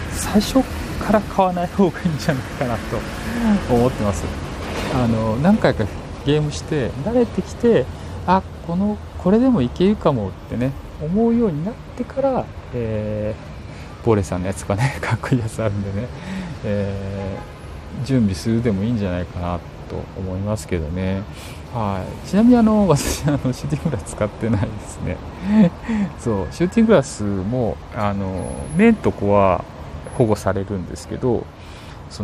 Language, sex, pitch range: Japanese, male, 95-145 Hz